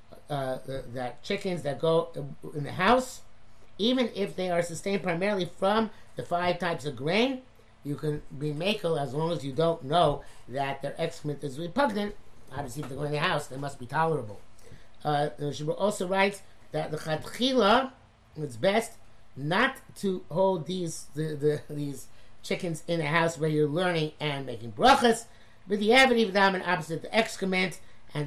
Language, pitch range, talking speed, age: English, 130-180 Hz, 175 wpm, 50-69